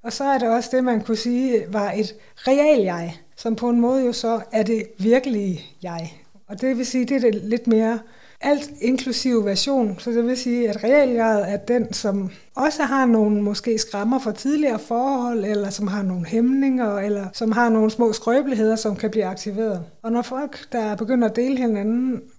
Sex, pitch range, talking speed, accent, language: female, 210-255 Hz, 200 wpm, native, Danish